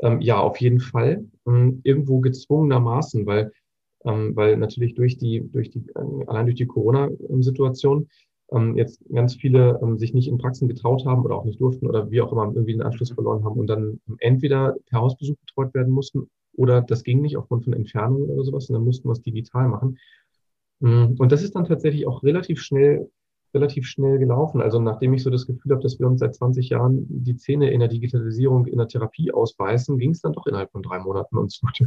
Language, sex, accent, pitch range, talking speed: German, male, German, 115-135 Hz, 205 wpm